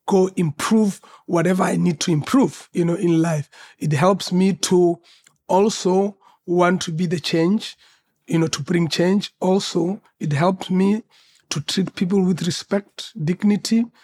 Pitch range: 175-215 Hz